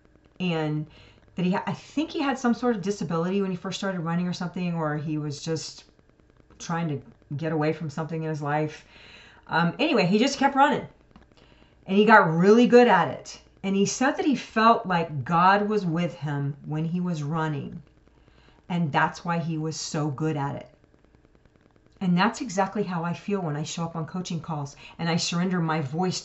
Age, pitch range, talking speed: 40-59, 155-190 Hz, 195 wpm